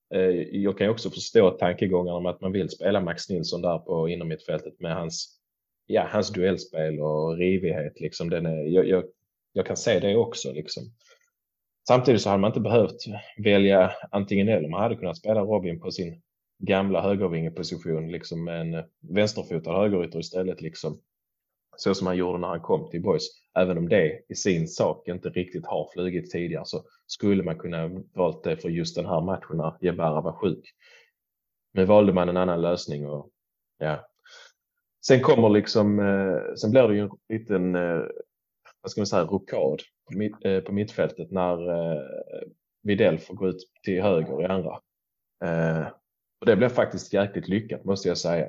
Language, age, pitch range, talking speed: Swedish, 20-39, 85-100 Hz, 175 wpm